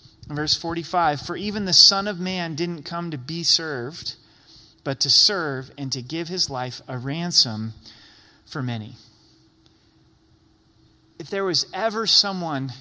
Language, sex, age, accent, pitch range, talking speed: English, male, 30-49, American, 135-180 Hz, 140 wpm